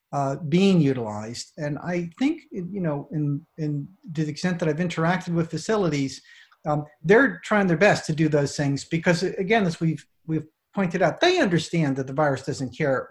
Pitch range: 120-165 Hz